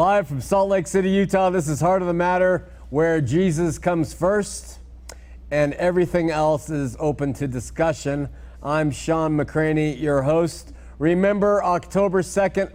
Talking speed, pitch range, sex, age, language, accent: 145 wpm, 155-195 Hz, male, 50-69, English, American